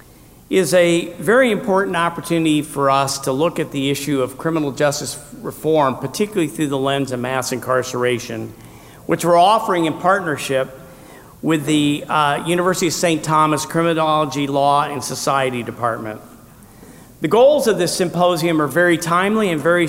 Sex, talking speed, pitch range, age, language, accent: male, 150 wpm, 145-185 Hz, 50-69, English, American